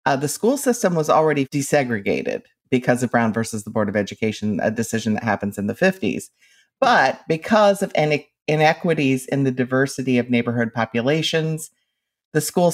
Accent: American